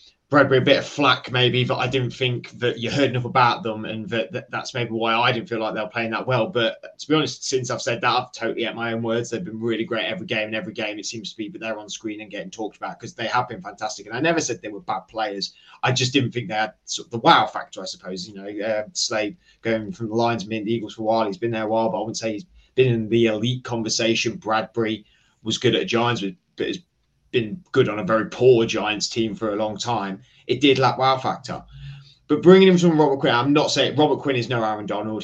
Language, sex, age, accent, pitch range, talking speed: English, male, 20-39, British, 110-140 Hz, 275 wpm